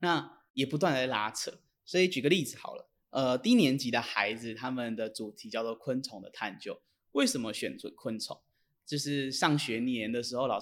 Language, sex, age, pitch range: Chinese, male, 20-39, 120-180 Hz